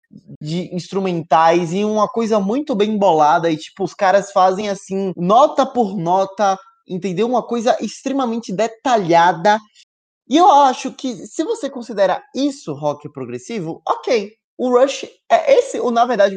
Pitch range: 180-245 Hz